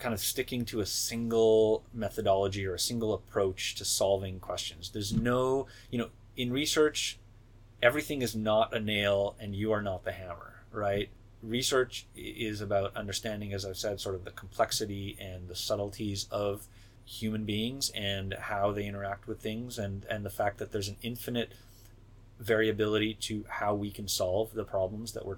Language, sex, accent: English, male, American